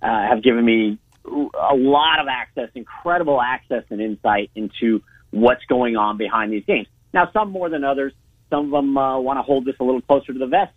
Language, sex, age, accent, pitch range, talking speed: English, male, 40-59, American, 115-145 Hz, 210 wpm